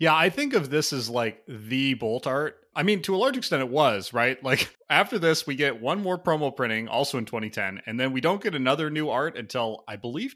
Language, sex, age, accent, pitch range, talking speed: English, male, 30-49, American, 115-155 Hz, 245 wpm